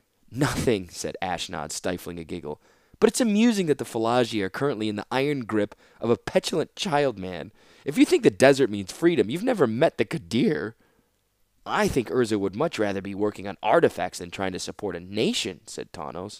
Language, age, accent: English, 20-39, American